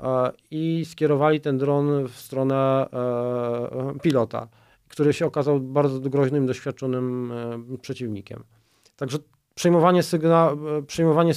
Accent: native